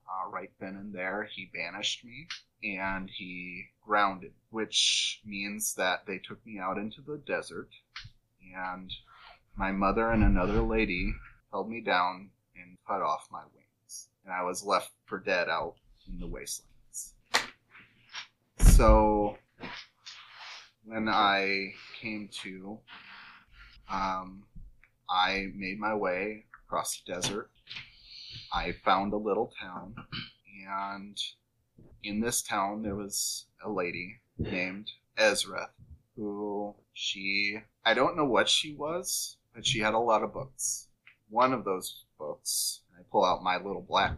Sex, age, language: male, 30-49, English